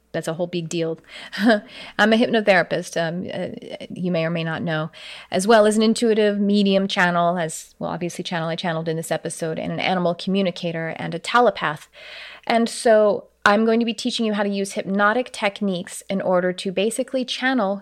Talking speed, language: 190 wpm, English